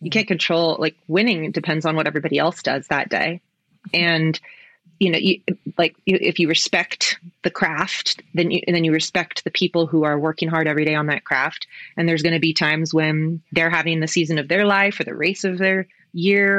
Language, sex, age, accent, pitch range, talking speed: English, female, 30-49, American, 155-185 Hz, 220 wpm